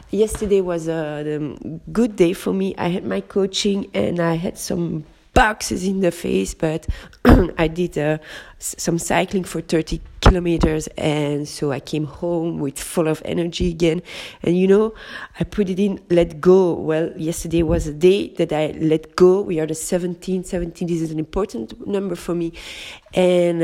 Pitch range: 155-190 Hz